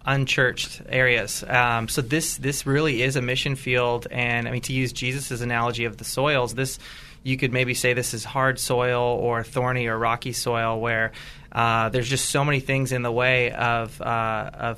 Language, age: English, 20-39